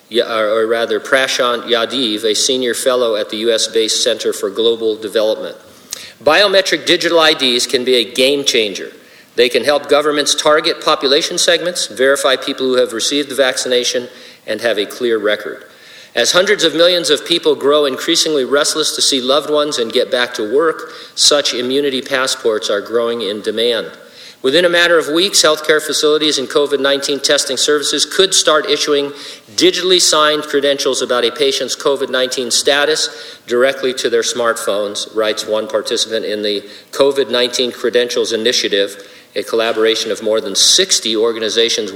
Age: 50-69